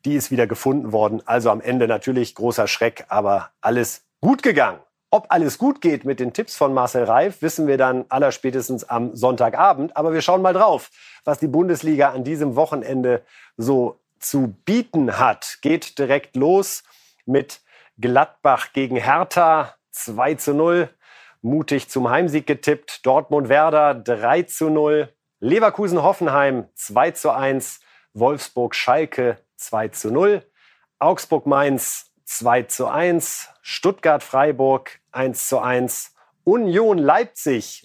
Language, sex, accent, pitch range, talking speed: German, male, German, 125-170 Hz, 135 wpm